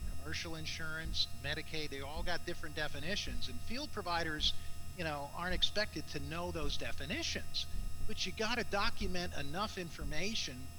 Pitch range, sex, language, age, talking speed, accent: 75-125 Hz, male, English, 50-69, 135 wpm, American